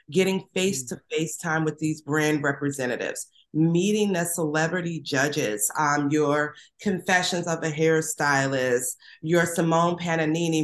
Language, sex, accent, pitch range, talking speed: English, female, American, 150-175 Hz, 115 wpm